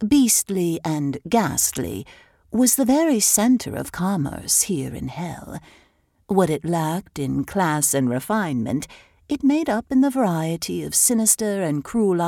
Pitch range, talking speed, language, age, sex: 150-225 Hz, 140 wpm, English, 60-79, female